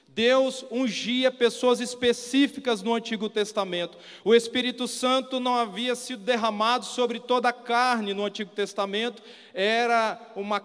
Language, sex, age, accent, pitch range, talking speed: Portuguese, male, 40-59, Brazilian, 230-260 Hz, 130 wpm